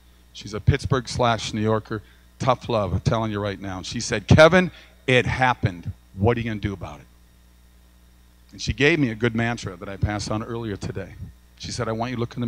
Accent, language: American, English